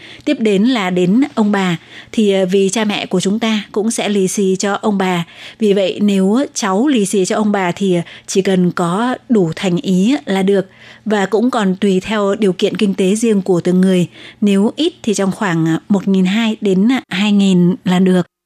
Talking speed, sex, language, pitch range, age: 200 wpm, female, Vietnamese, 185-215 Hz, 20-39